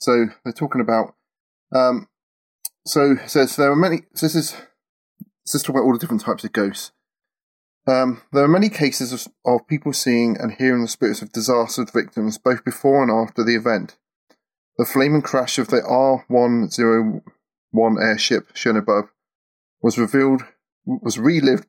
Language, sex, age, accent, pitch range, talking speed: English, male, 30-49, British, 110-130 Hz, 175 wpm